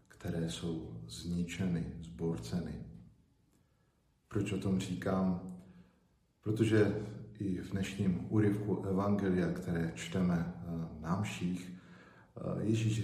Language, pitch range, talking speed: Slovak, 85-110 Hz, 85 wpm